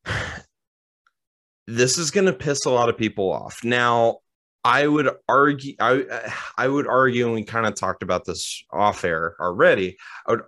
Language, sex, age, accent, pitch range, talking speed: English, male, 30-49, American, 95-125 Hz, 170 wpm